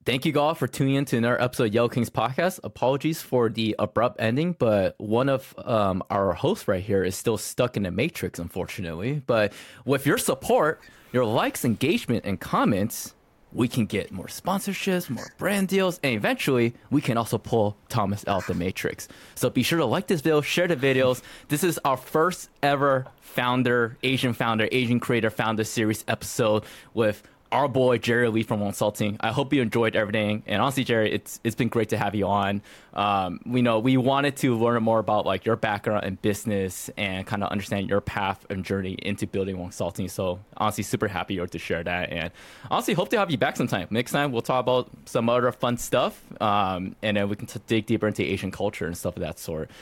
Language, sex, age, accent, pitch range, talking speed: English, male, 20-39, American, 105-130 Hz, 210 wpm